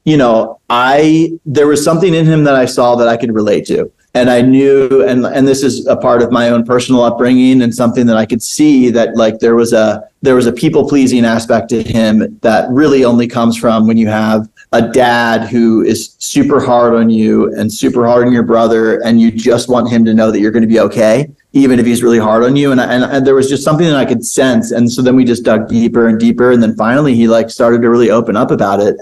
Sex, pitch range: male, 115-130 Hz